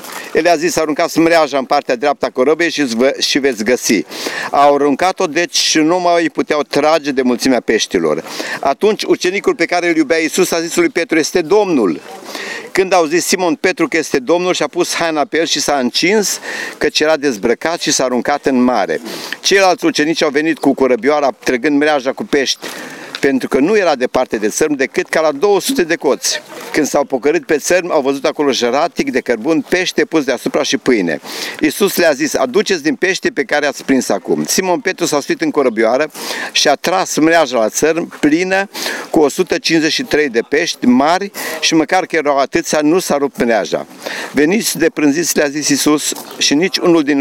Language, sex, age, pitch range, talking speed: Romanian, male, 50-69, 145-185 Hz, 185 wpm